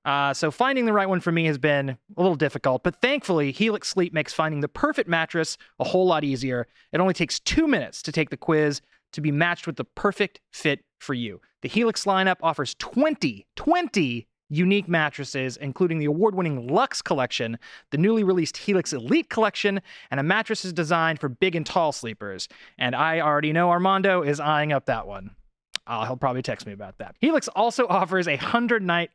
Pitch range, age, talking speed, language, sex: 145-190 Hz, 30-49, 195 wpm, English, male